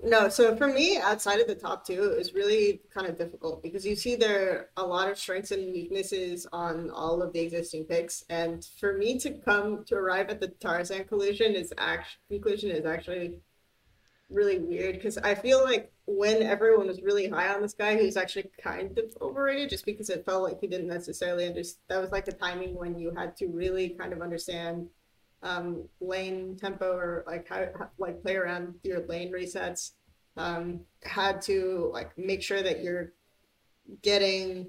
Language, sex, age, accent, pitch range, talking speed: English, female, 30-49, American, 175-210 Hz, 190 wpm